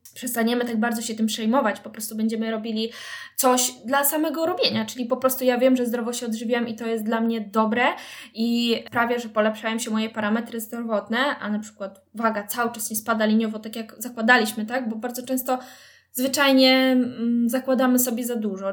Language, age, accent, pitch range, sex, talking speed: Polish, 10-29, native, 215-240 Hz, female, 190 wpm